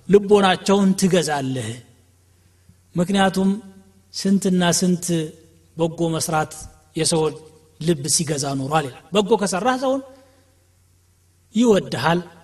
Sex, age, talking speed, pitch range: male, 30-49, 75 wpm, 160-205 Hz